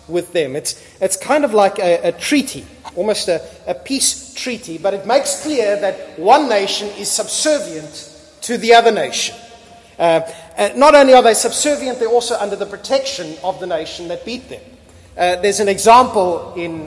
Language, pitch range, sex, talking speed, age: English, 145-215 Hz, male, 180 wpm, 30-49